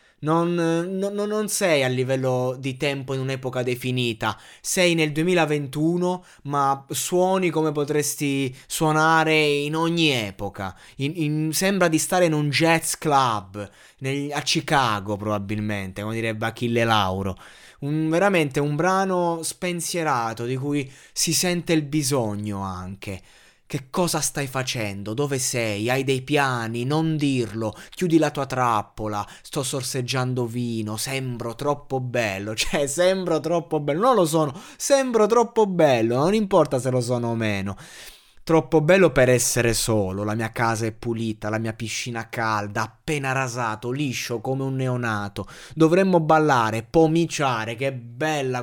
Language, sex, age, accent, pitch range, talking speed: Italian, male, 20-39, native, 115-155 Hz, 135 wpm